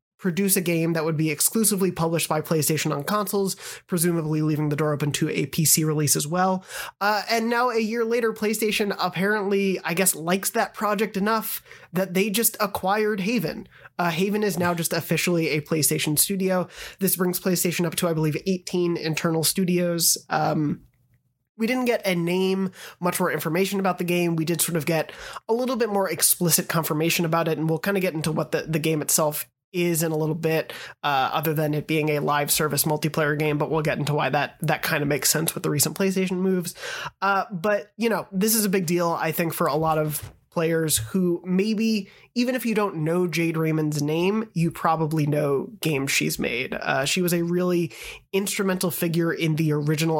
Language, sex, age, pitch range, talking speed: English, male, 20-39, 155-195 Hz, 205 wpm